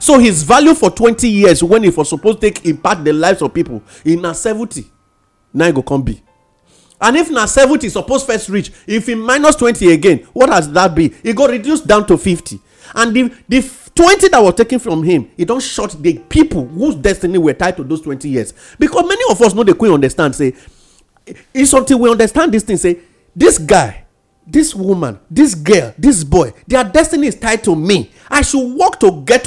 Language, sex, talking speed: English, male, 205 wpm